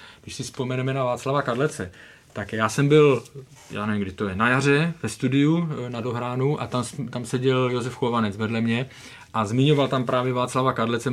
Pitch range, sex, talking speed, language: 120-145 Hz, male, 190 wpm, Czech